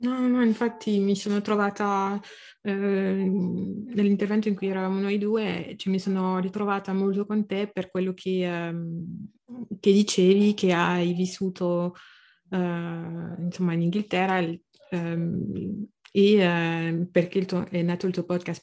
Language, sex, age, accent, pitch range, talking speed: Italian, female, 30-49, native, 170-195 Hz, 145 wpm